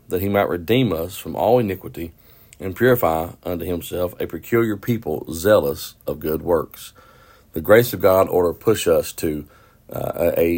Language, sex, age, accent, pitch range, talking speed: English, male, 50-69, American, 80-95 Hz, 165 wpm